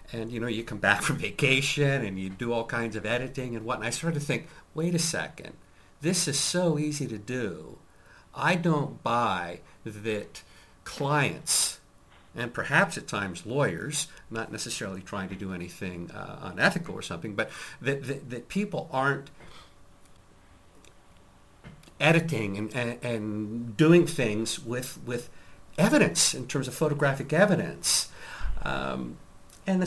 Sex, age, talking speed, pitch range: male, 50-69, 145 wpm, 110-165 Hz